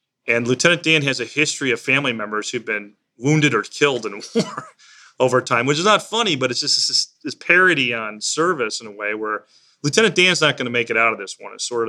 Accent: American